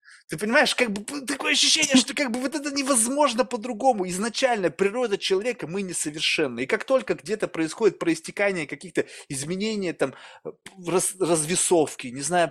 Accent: native